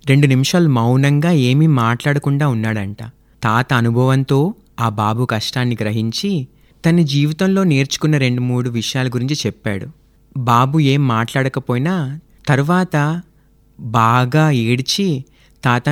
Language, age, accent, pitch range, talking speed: Telugu, 30-49, native, 125-165 Hz, 100 wpm